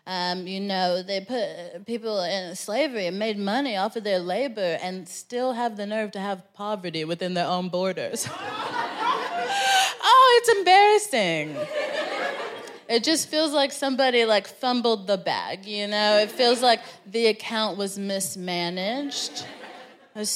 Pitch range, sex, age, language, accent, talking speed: 195-255 Hz, female, 20-39, English, American, 145 wpm